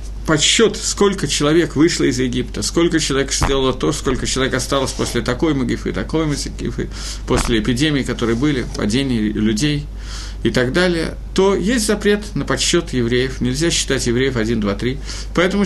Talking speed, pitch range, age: 155 wpm, 120-185 Hz, 50-69